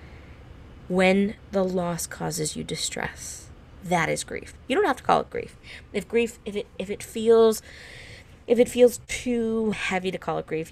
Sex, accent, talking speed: female, American, 180 wpm